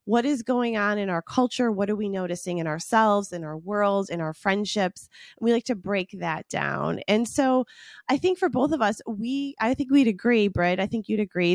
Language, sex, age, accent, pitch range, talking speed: English, female, 20-39, American, 180-235 Hz, 225 wpm